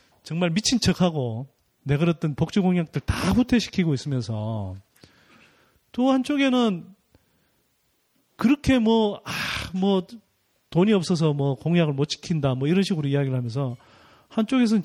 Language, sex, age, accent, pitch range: Korean, male, 30-49, native, 135-210 Hz